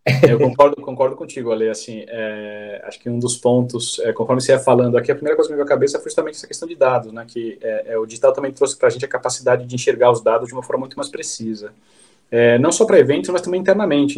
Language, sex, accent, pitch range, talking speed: Portuguese, male, Brazilian, 125-190 Hz, 240 wpm